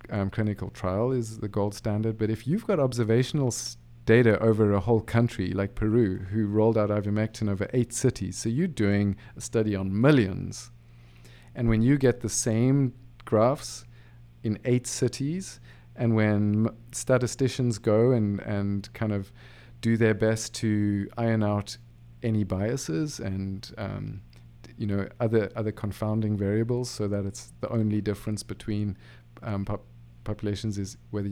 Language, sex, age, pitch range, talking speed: English, male, 40-59, 100-120 Hz, 155 wpm